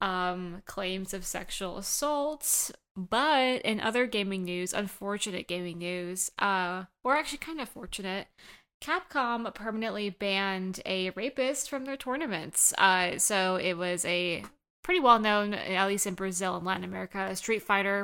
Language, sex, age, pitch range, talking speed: English, female, 20-39, 185-230 Hz, 145 wpm